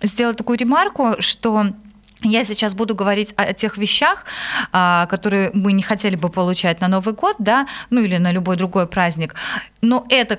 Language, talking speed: Russian, 175 wpm